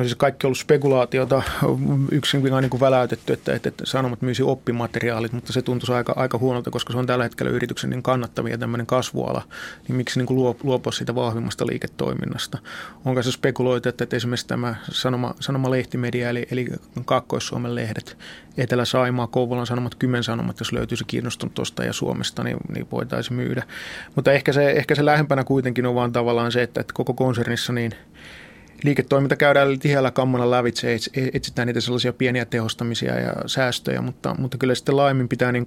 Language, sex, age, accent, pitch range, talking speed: Finnish, male, 30-49, native, 120-130 Hz, 175 wpm